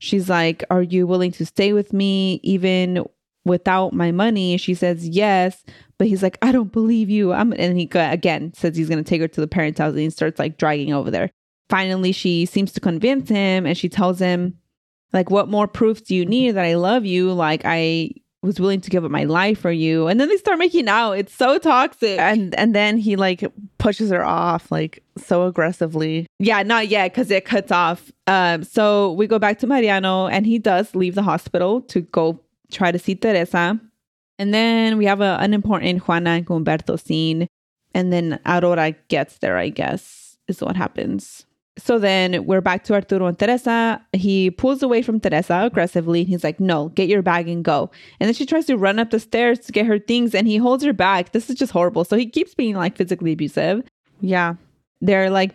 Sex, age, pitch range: female, 20-39, 175-215 Hz